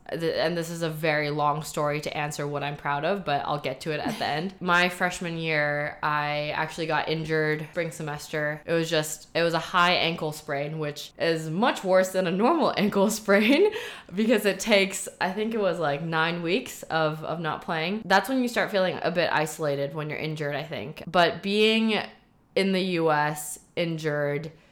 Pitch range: 150-185 Hz